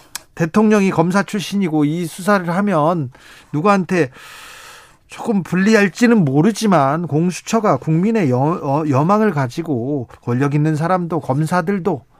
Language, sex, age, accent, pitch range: Korean, male, 40-59, native, 150-215 Hz